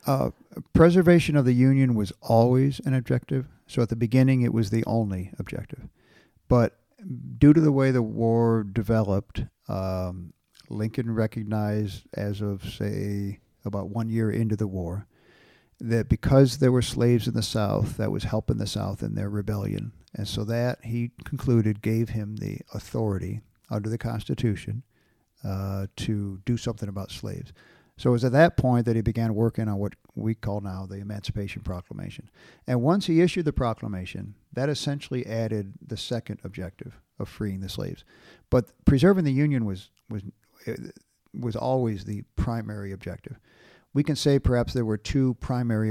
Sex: male